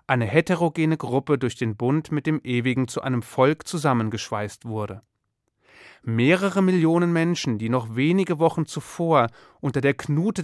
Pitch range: 125-160 Hz